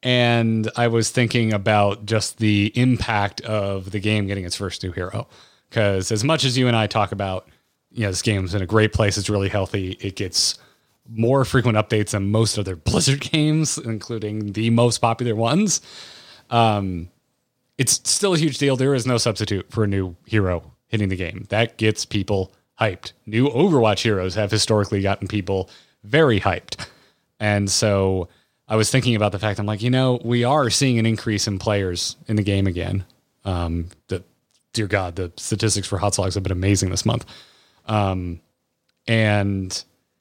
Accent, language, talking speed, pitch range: American, English, 180 wpm, 100-120 Hz